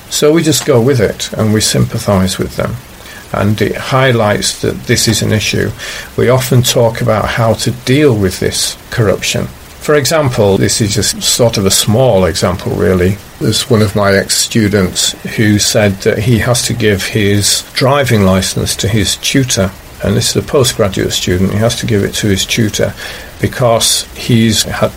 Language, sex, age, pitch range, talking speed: English, male, 50-69, 95-120 Hz, 180 wpm